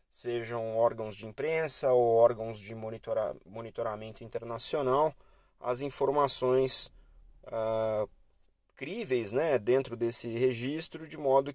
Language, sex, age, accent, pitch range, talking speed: Portuguese, male, 30-49, Brazilian, 110-135 Hz, 100 wpm